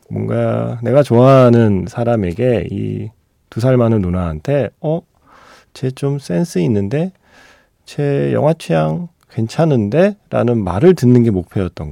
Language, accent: Korean, native